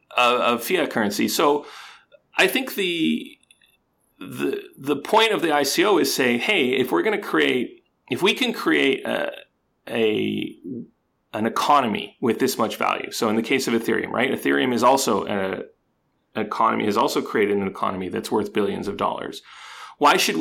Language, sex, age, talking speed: English, male, 30-49, 170 wpm